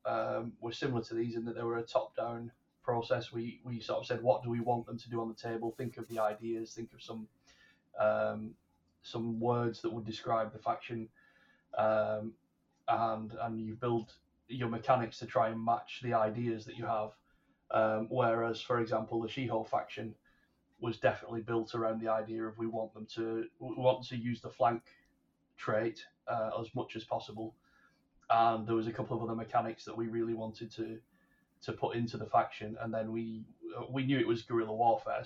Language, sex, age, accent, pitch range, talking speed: English, male, 30-49, British, 110-120 Hz, 195 wpm